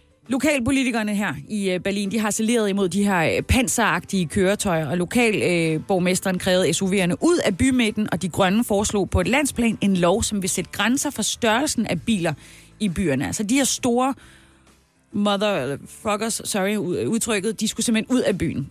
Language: Danish